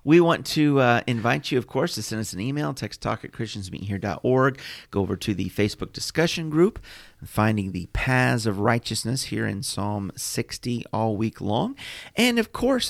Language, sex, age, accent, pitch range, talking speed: English, male, 40-59, American, 100-130 Hz, 180 wpm